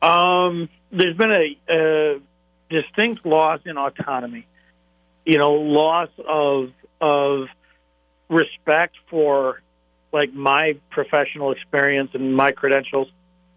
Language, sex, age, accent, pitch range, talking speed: English, male, 50-69, American, 135-180 Hz, 100 wpm